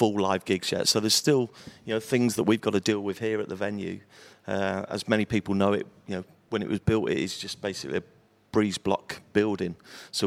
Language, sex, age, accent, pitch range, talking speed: English, male, 40-59, British, 95-110 Hz, 235 wpm